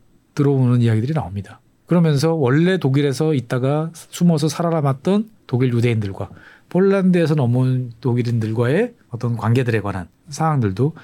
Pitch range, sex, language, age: 125-175 Hz, male, Korean, 40-59